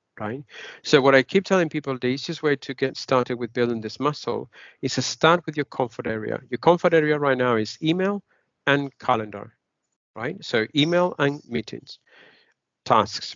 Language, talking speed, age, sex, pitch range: Finnish, 175 wpm, 50-69, male, 120-160 Hz